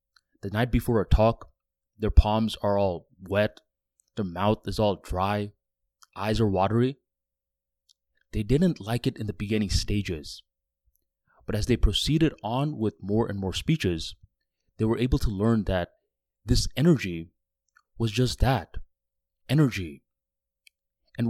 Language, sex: English, male